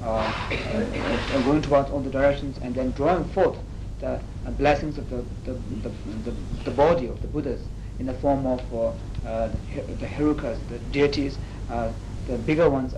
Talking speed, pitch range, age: 175 wpm, 115-135 Hz, 50-69